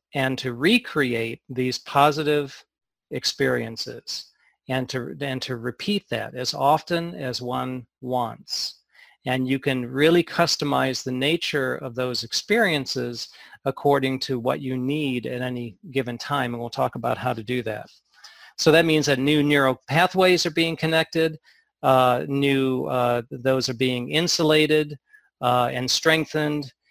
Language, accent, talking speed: English, American, 145 wpm